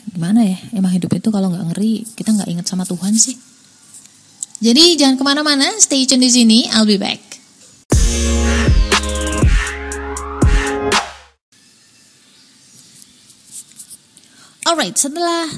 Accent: native